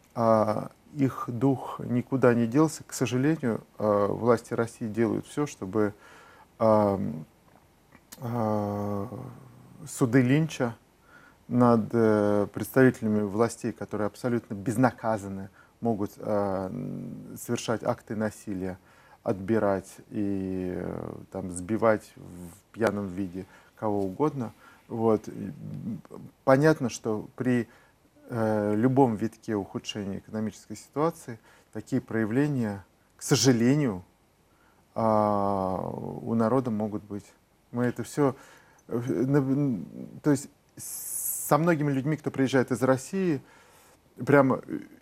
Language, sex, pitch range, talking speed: Russian, male, 105-130 Hz, 80 wpm